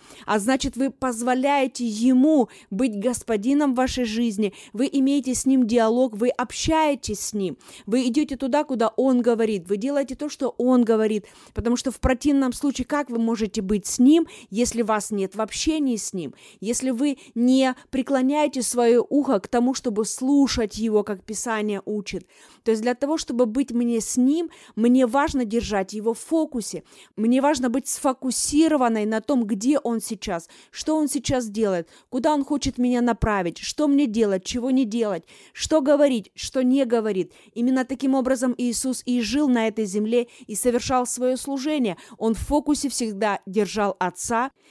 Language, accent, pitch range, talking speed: Russian, native, 220-270 Hz, 170 wpm